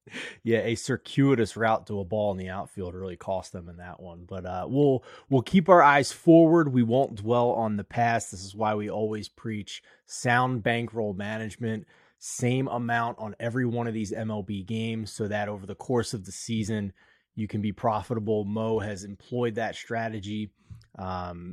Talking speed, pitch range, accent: 185 wpm, 105-120 Hz, American